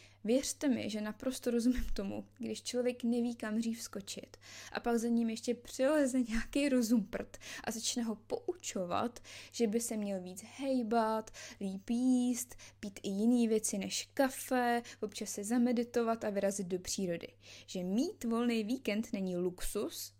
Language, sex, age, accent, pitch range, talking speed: Czech, female, 20-39, native, 190-245 Hz, 155 wpm